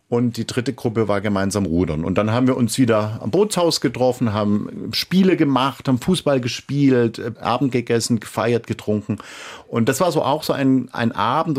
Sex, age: male, 50-69